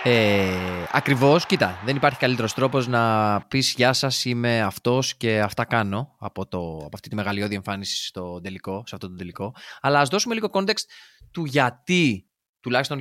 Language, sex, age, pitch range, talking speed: Greek, male, 20-39, 105-145 Hz, 170 wpm